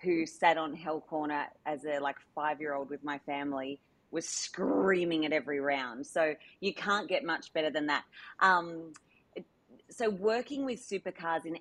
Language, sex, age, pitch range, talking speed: English, female, 30-49, 150-205 Hz, 160 wpm